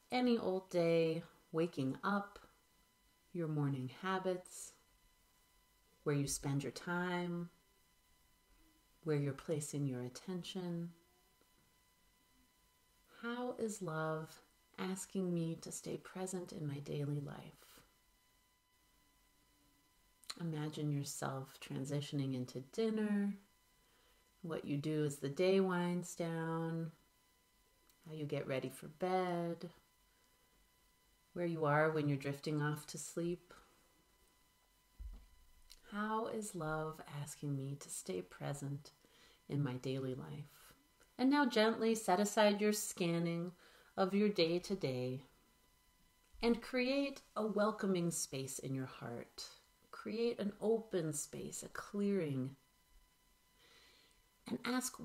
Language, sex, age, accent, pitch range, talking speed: English, female, 40-59, American, 145-195 Hz, 105 wpm